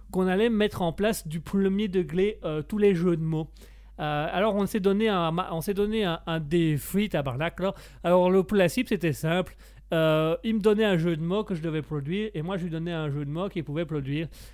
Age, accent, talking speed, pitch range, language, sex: 30-49, French, 230 wpm, 155-195 Hz, French, male